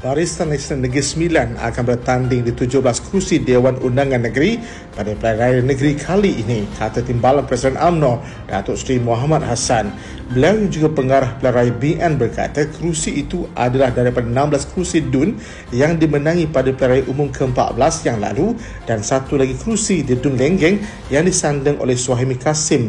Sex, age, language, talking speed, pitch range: male, 50-69, Malay, 160 wpm, 120-155 Hz